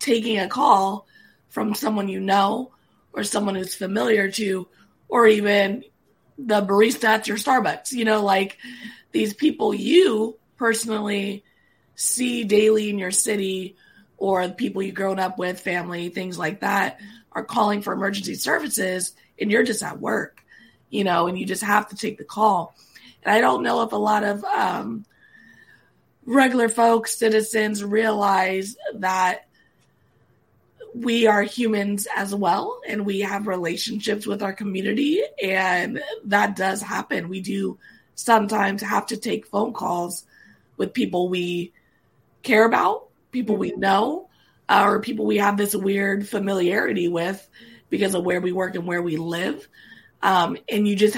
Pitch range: 190-220 Hz